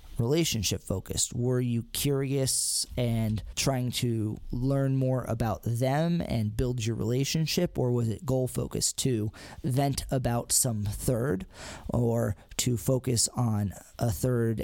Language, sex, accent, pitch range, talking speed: English, male, American, 105-125 Hz, 130 wpm